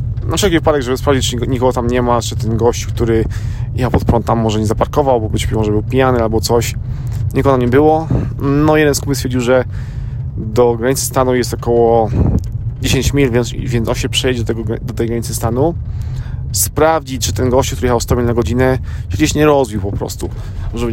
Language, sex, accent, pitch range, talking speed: Polish, male, native, 110-130 Hz, 205 wpm